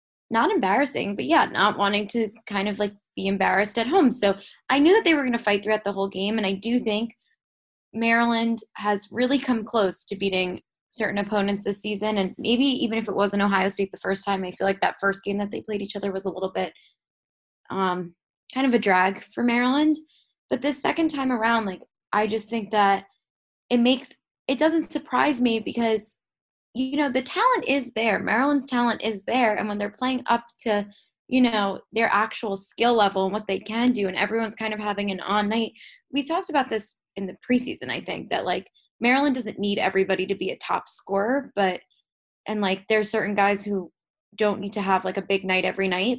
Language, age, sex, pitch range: English, 10-29, female, 195-245 Hz